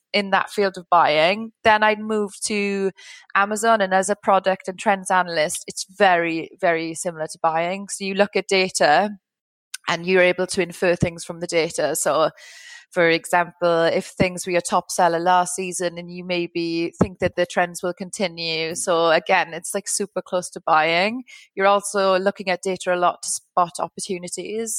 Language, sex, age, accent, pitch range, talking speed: English, female, 30-49, British, 175-200 Hz, 180 wpm